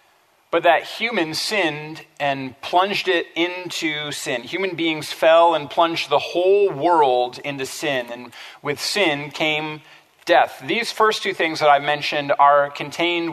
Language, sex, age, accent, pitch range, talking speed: English, male, 40-59, American, 150-180 Hz, 150 wpm